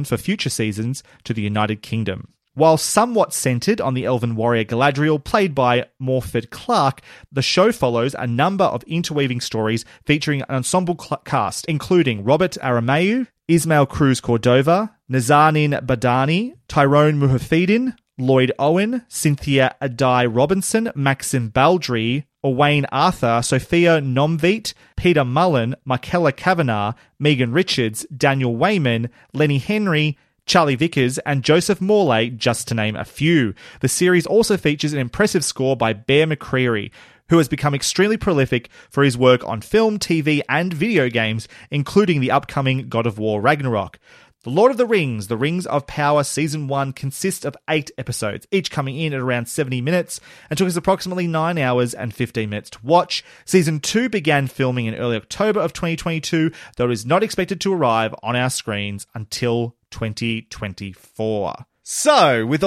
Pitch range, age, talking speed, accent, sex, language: 125-170 Hz, 30-49, 155 wpm, Australian, male, English